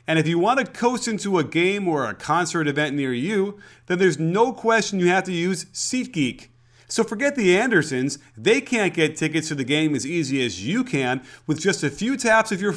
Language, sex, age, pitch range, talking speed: English, male, 30-49, 145-205 Hz, 220 wpm